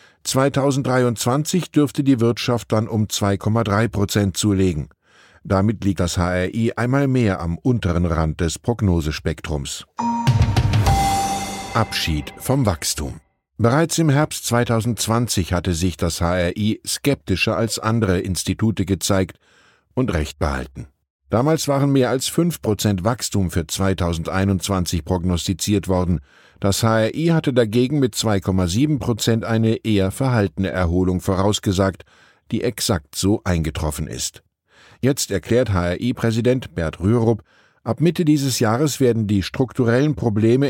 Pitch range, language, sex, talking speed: 95-125 Hz, German, male, 120 wpm